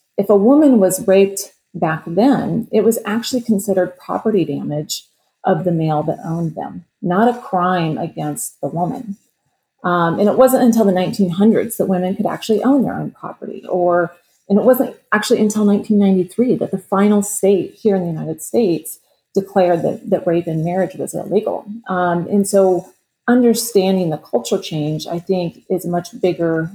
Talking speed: 175 wpm